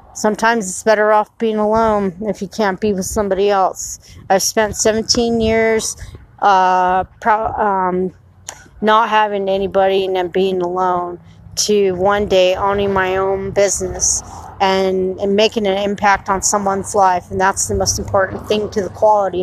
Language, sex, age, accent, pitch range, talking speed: English, female, 30-49, American, 185-215 Hz, 155 wpm